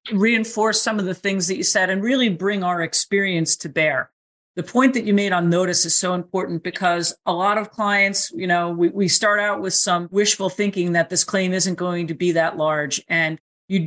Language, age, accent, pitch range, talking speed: English, 40-59, American, 170-200 Hz, 220 wpm